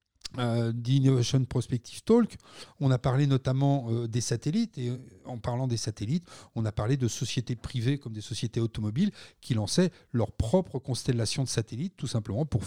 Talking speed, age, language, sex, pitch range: 170 wpm, 40-59, French, male, 115-145 Hz